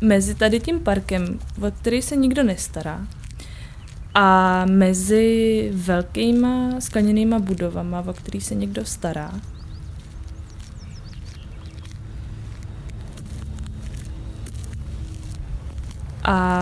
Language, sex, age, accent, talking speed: Czech, female, 20-39, native, 70 wpm